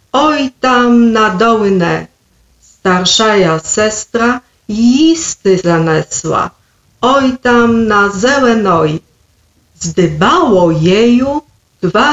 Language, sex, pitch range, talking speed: Polish, female, 185-245 Hz, 75 wpm